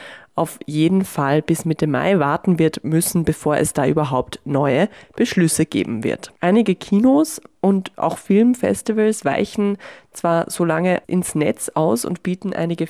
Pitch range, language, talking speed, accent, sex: 155-200 Hz, German, 150 wpm, German, female